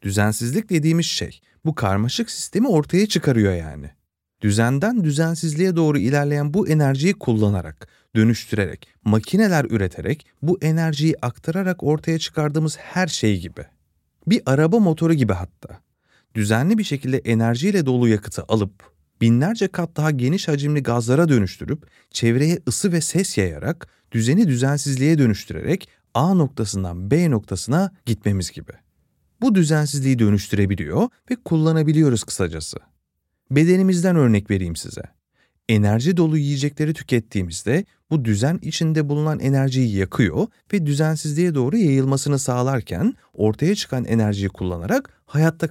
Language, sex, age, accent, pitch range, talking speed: Turkish, male, 30-49, native, 105-165 Hz, 120 wpm